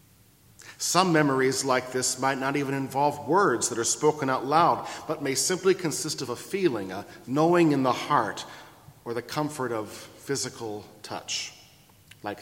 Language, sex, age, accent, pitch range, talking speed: English, male, 40-59, American, 120-155 Hz, 160 wpm